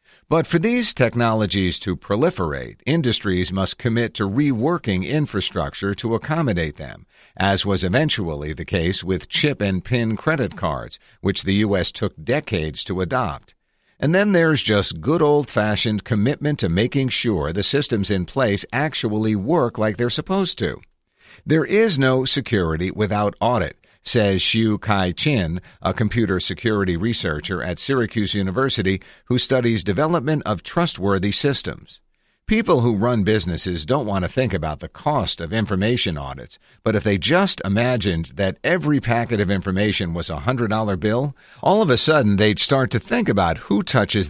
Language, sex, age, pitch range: English, male, 50-69, 95-125 Hz